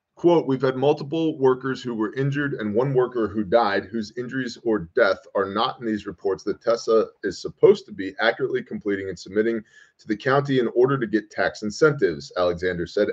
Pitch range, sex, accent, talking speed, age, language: 105-140 Hz, male, American, 195 wpm, 30-49, English